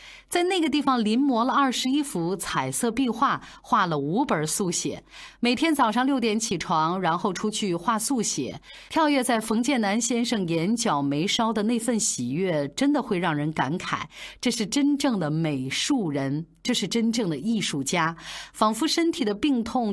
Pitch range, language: 170-255 Hz, Chinese